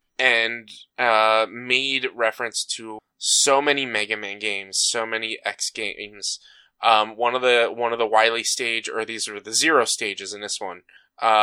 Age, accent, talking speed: 20-39, American, 175 wpm